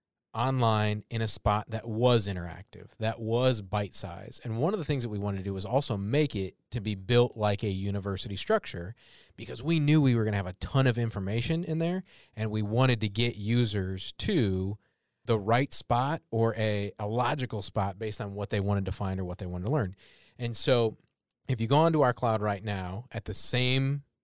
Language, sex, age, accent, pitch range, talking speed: English, male, 30-49, American, 100-125 Hz, 215 wpm